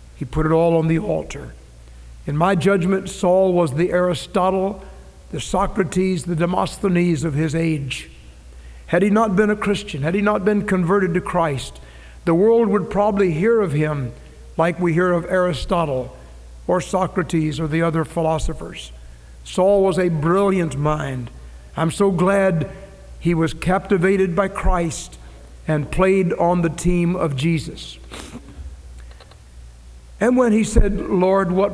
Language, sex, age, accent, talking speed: English, male, 60-79, American, 145 wpm